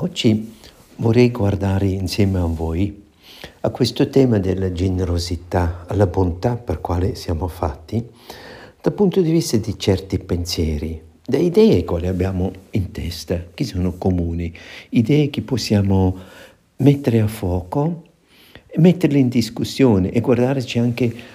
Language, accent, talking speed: Italian, native, 130 wpm